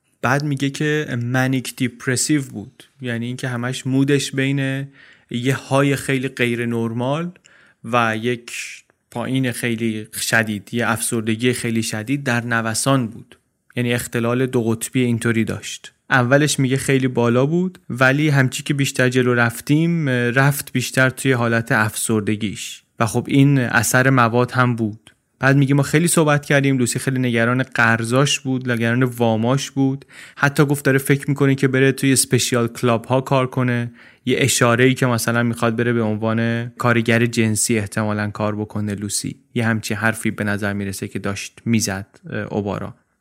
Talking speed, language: 155 wpm, Persian